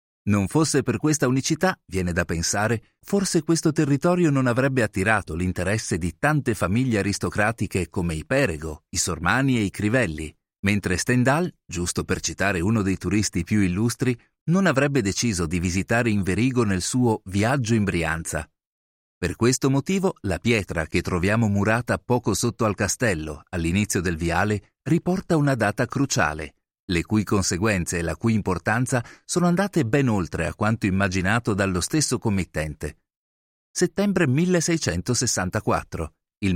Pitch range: 90-135 Hz